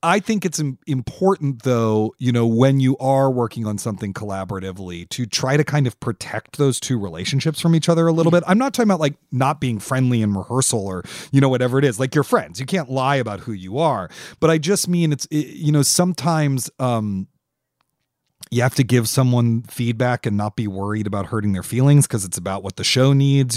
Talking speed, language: 215 wpm, English